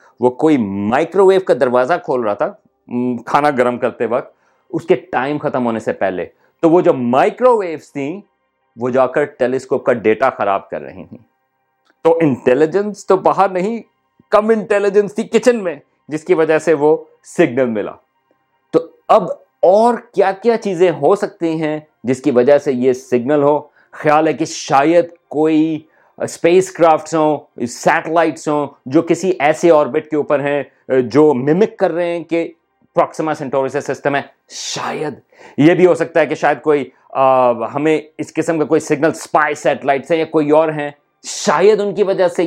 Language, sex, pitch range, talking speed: Urdu, male, 140-180 Hz, 175 wpm